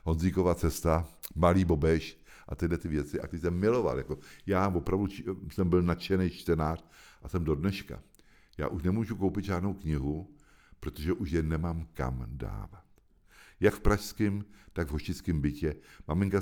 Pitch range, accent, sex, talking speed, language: 75-95 Hz, native, male, 155 wpm, Czech